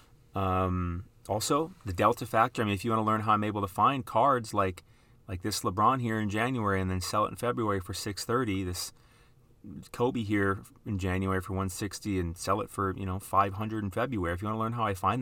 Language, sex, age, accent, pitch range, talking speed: English, male, 30-49, American, 95-120 Hz, 235 wpm